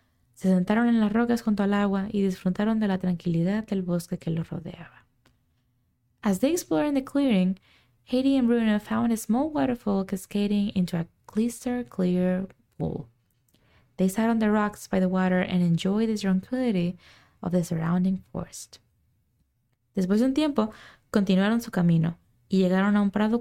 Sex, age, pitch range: female, 20-39, 170-220 Hz